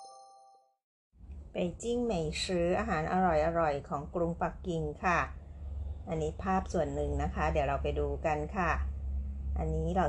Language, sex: Chinese, female